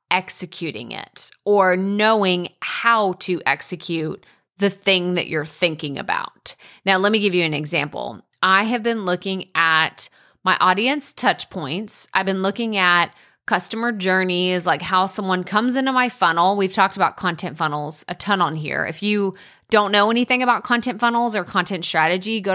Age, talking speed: 30-49, 170 wpm